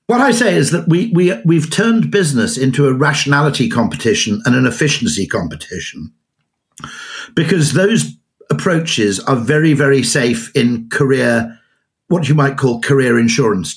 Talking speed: 145 wpm